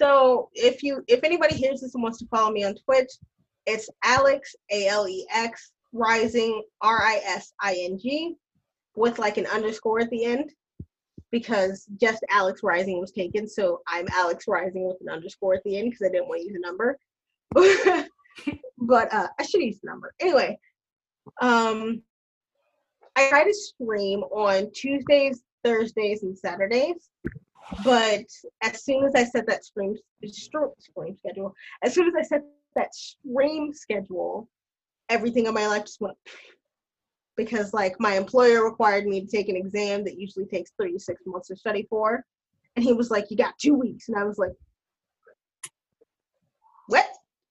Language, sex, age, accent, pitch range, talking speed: English, female, 10-29, American, 205-280 Hz, 160 wpm